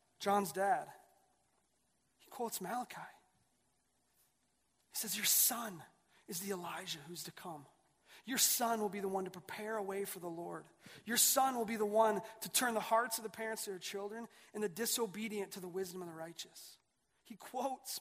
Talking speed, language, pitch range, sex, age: 185 wpm, English, 205-260 Hz, male, 30-49